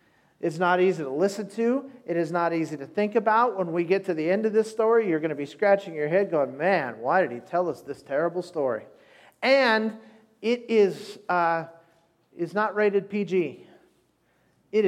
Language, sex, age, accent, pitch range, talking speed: English, male, 40-59, American, 175-235 Hz, 195 wpm